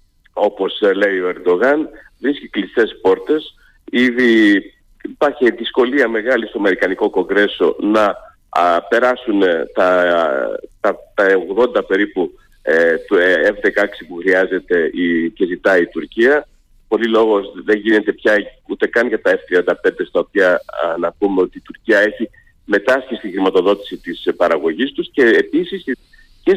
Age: 50-69